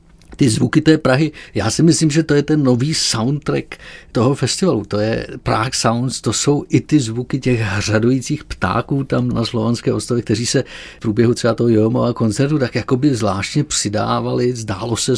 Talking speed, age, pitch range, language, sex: 180 wpm, 50-69, 105-120 Hz, Czech, male